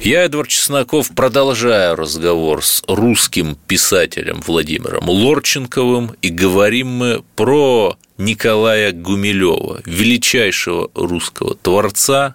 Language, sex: Russian, male